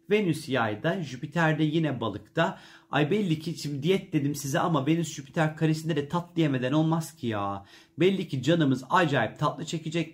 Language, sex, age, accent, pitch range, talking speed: Turkish, male, 40-59, native, 130-170 Hz, 170 wpm